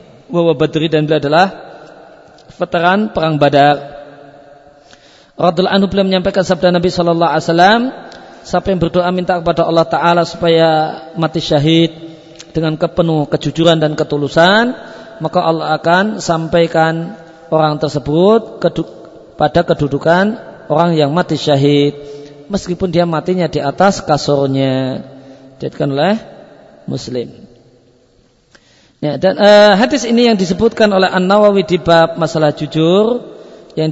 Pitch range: 150-180 Hz